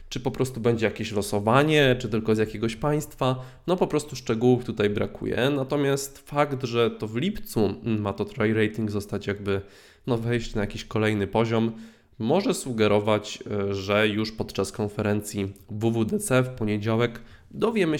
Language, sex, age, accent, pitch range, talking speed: Polish, male, 20-39, native, 105-130 Hz, 145 wpm